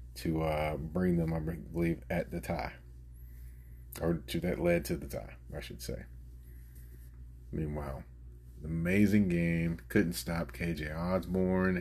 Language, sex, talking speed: English, male, 130 wpm